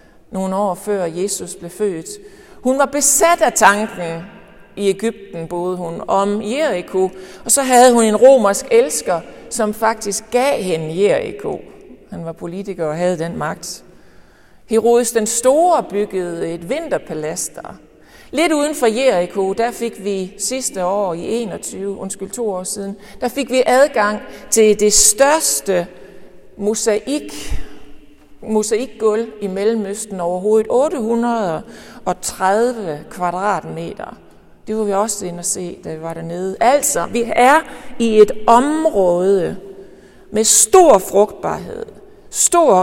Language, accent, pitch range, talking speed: Danish, native, 190-240 Hz, 130 wpm